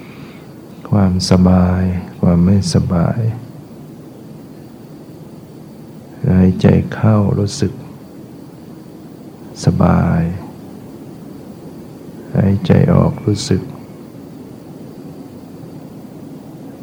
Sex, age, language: male, 60-79, Thai